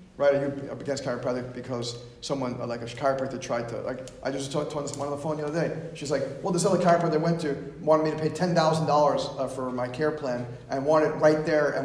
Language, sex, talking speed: English, male, 255 wpm